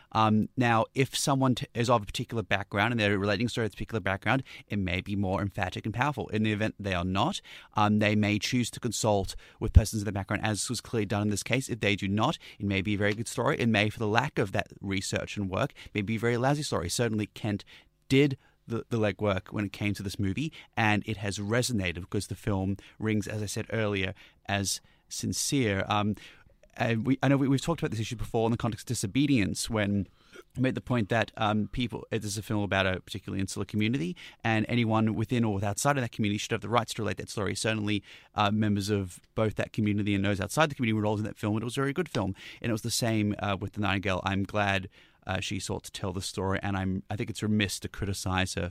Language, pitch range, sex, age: English, 100-120 Hz, male, 30-49